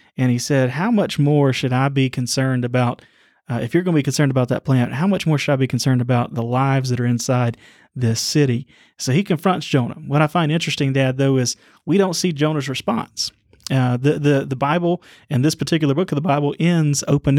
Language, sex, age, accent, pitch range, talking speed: English, male, 30-49, American, 130-150 Hz, 230 wpm